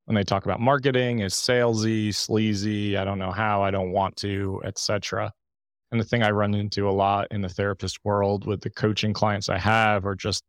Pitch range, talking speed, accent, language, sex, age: 100-115 Hz, 210 wpm, American, English, male, 30-49